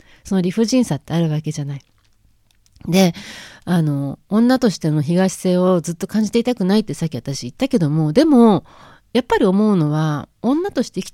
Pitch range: 155-235 Hz